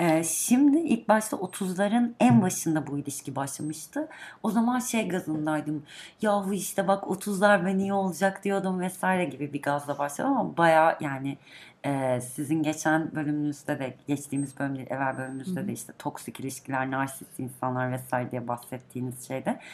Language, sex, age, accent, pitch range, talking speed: Turkish, female, 30-49, native, 140-190 Hz, 145 wpm